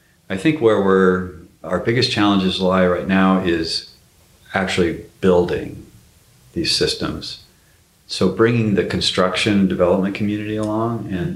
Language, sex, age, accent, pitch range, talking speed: English, male, 40-59, American, 90-100 Hz, 120 wpm